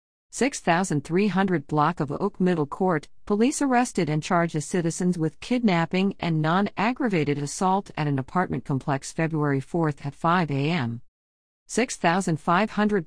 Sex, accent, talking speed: female, American, 125 wpm